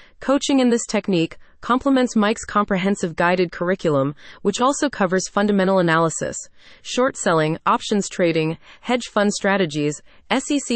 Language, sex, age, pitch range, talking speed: English, female, 30-49, 170-230 Hz, 125 wpm